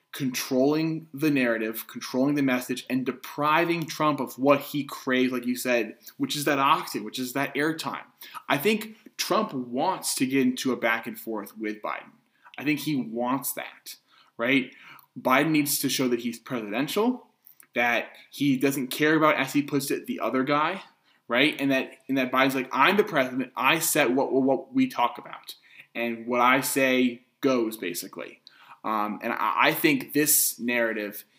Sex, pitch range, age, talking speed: male, 120-150 Hz, 20-39, 170 wpm